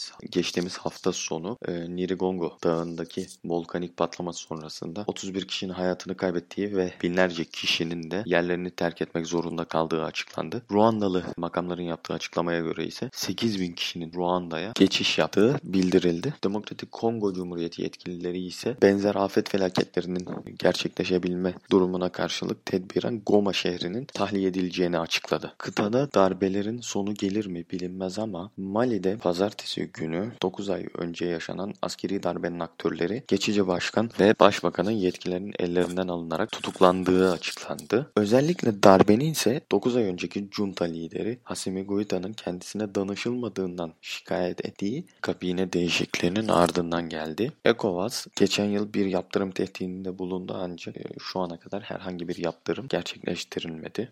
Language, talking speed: Turkish, 125 wpm